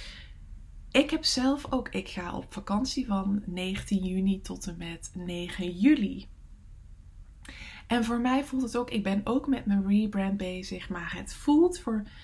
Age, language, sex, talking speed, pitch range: 20-39, English, female, 160 wpm, 185-230 Hz